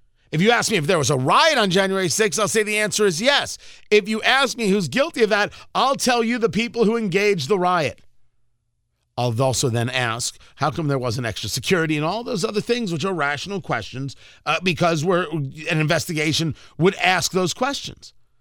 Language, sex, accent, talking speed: English, male, American, 200 wpm